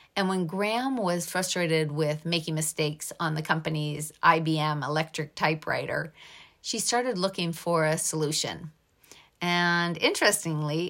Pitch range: 155-195 Hz